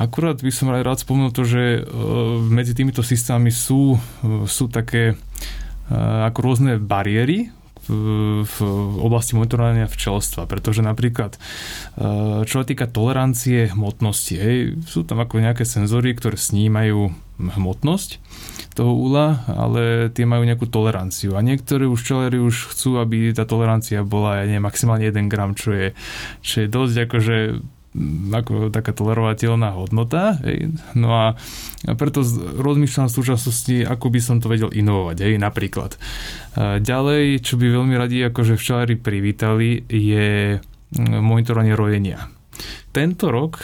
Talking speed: 135 wpm